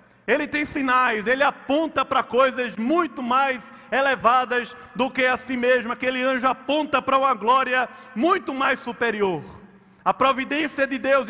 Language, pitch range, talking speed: Portuguese, 200-260 Hz, 150 wpm